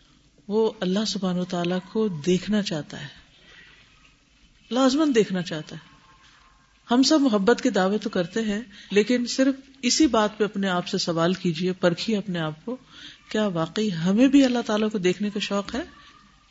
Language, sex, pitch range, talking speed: Urdu, female, 185-245 Hz, 165 wpm